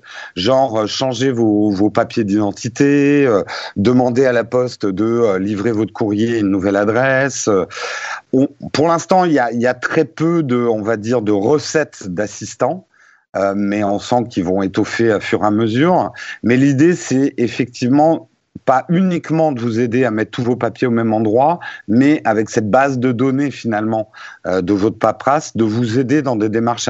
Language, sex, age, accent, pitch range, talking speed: French, male, 50-69, French, 105-140 Hz, 185 wpm